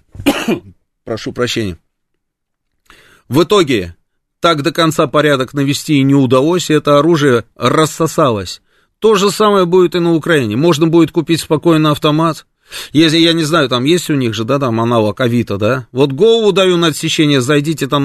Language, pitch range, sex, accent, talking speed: Russian, 110-155 Hz, male, native, 165 wpm